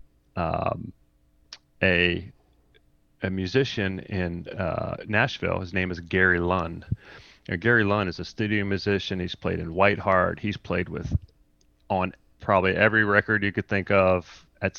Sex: male